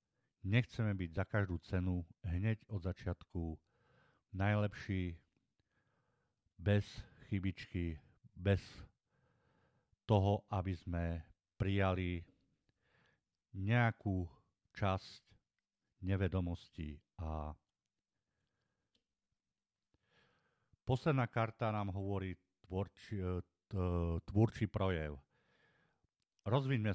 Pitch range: 90-105 Hz